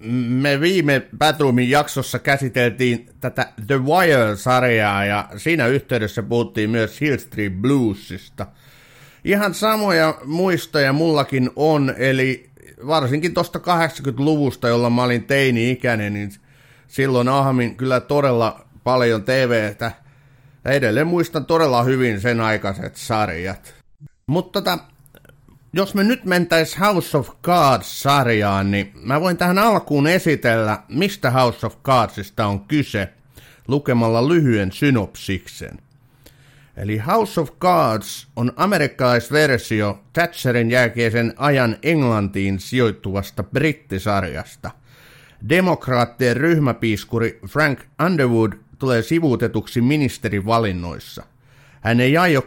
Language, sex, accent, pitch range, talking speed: Finnish, male, native, 115-145 Hz, 105 wpm